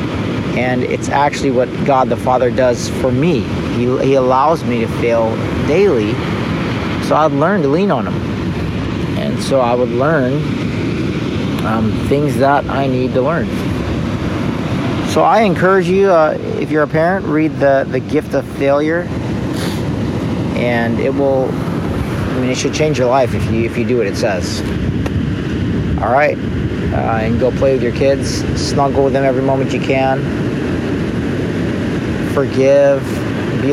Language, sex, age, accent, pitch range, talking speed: English, male, 50-69, American, 110-135 Hz, 155 wpm